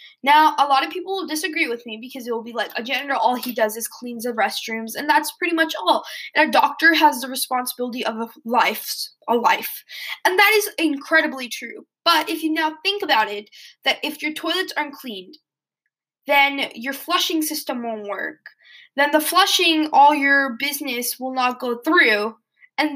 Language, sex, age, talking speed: English, female, 10-29, 195 wpm